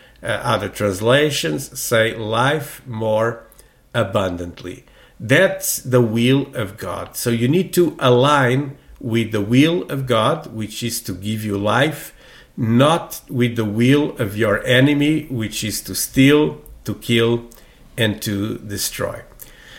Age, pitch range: 50-69, 110-135 Hz